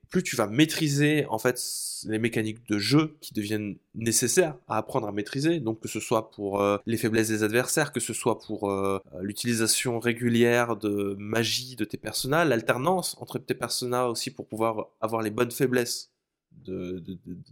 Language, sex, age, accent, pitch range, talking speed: French, male, 20-39, French, 110-135 Hz, 180 wpm